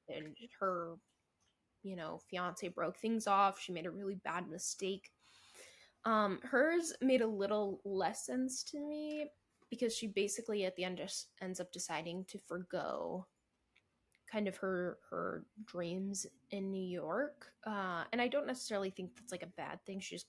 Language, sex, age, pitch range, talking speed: English, female, 10-29, 180-225 Hz, 165 wpm